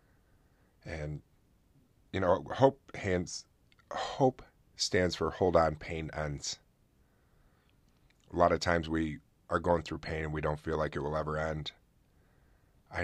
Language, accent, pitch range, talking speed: English, American, 75-85 Hz, 145 wpm